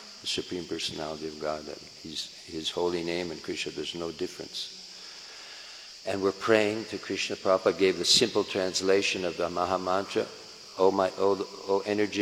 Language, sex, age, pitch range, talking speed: Italian, male, 60-79, 85-105 Hz, 165 wpm